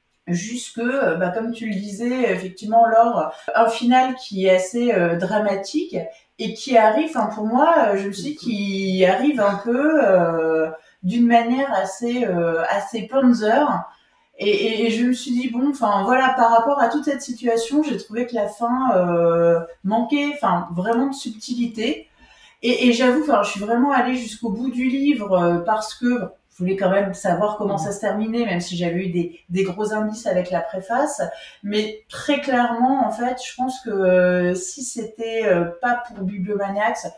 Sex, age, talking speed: female, 30-49, 180 wpm